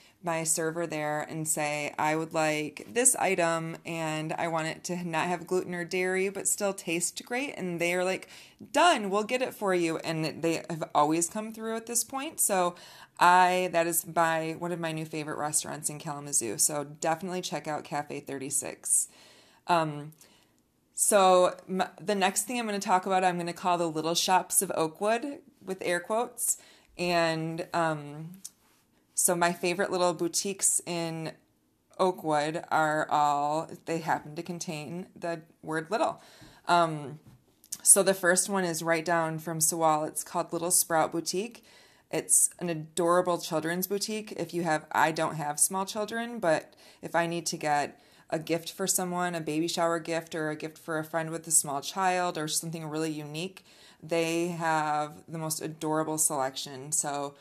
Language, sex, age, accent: English, female, 20-39, American